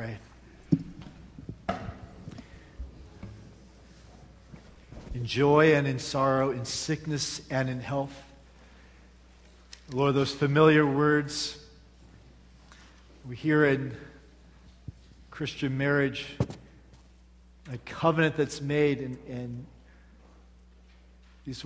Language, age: English, 50-69